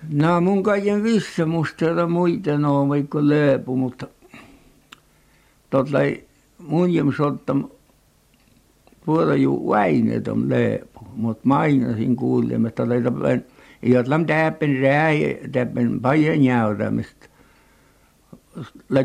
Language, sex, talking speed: Finnish, male, 90 wpm